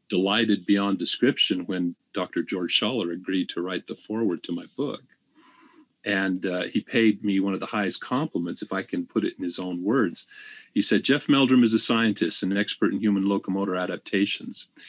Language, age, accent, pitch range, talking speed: English, 40-59, American, 95-120 Hz, 195 wpm